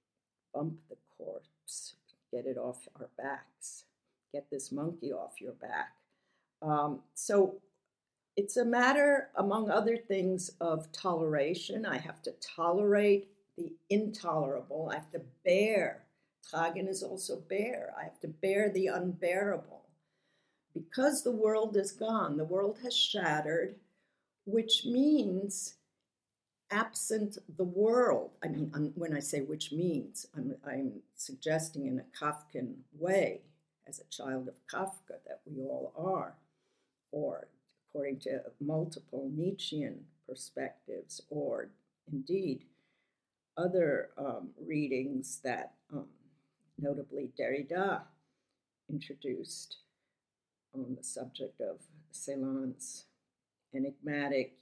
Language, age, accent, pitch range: English, 50-69, American, 150-215 Hz